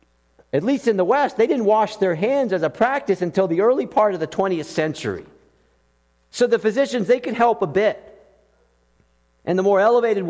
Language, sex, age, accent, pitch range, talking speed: English, male, 50-69, American, 135-195 Hz, 190 wpm